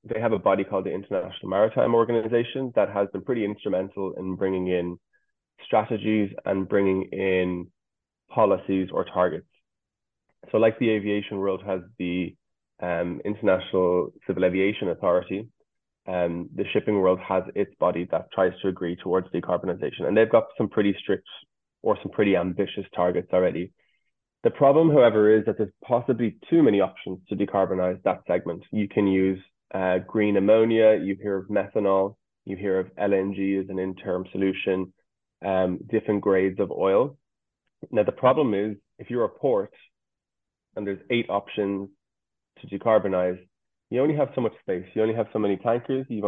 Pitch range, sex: 95-110 Hz, male